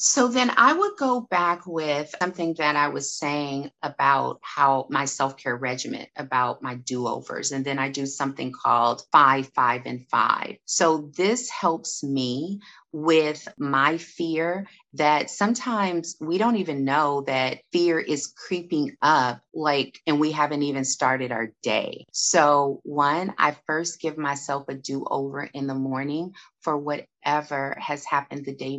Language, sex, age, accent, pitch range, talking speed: English, female, 30-49, American, 135-160 Hz, 155 wpm